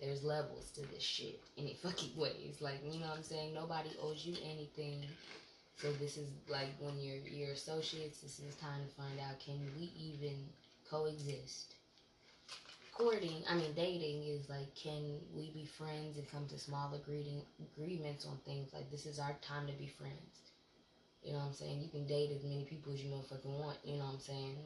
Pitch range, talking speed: 145-160 Hz, 200 wpm